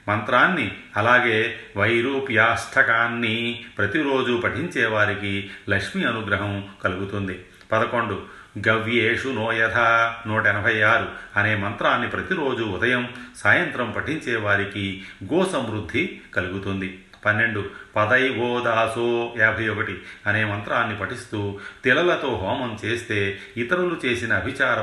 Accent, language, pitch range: native, Telugu, 100-115 Hz